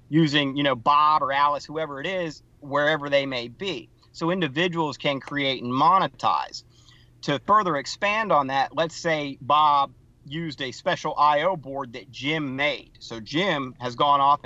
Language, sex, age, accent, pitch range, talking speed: English, male, 40-59, American, 120-155 Hz, 165 wpm